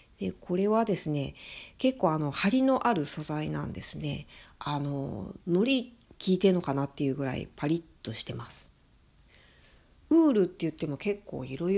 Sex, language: female, Japanese